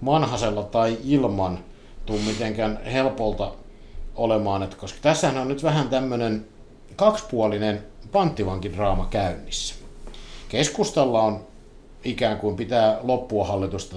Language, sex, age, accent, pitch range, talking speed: Finnish, male, 50-69, native, 100-125 Hz, 105 wpm